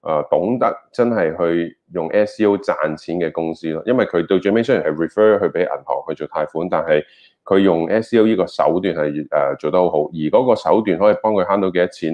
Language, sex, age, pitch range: Chinese, male, 20-39, 80-110 Hz